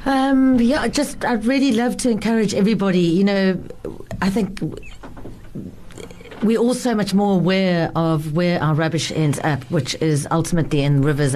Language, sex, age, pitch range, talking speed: English, female, 40-59, 165-195 Hz, 160 wpm